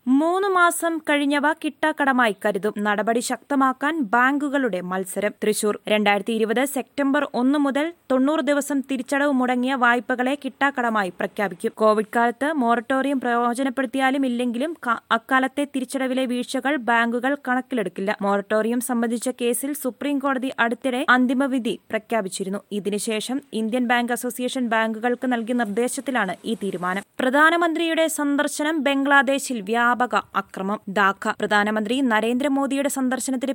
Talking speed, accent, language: 95 wpm, native, Malayalam